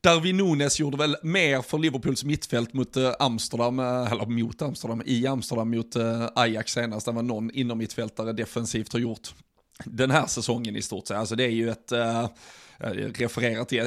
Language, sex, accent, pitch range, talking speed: Swedish, male, native, 115-125 Hz, 165 wpm